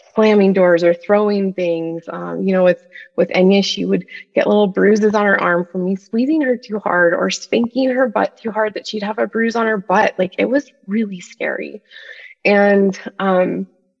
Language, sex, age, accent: English, female, 20-39, American